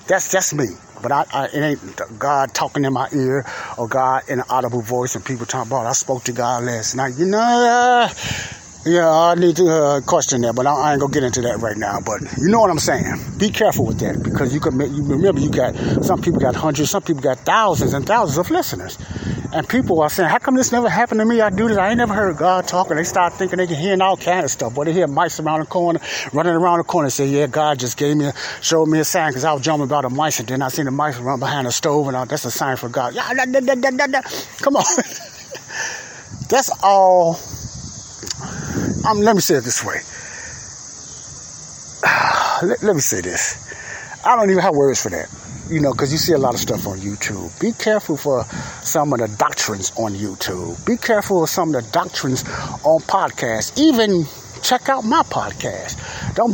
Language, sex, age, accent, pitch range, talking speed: English, male, 30-49, American, 135-200 Hz, 225 wpm